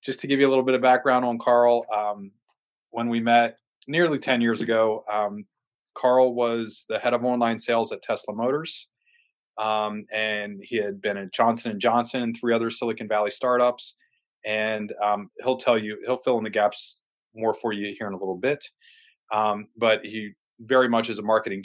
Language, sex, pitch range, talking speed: English, male, 105-125 Hz, 195 wpm